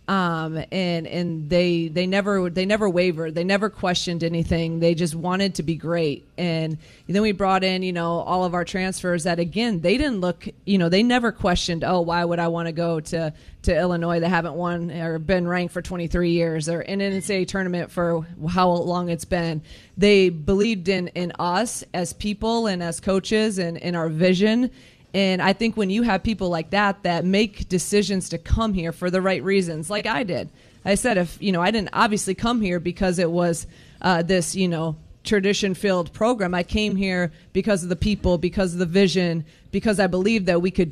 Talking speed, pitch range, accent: 210 wpm, 170-195 Hz, American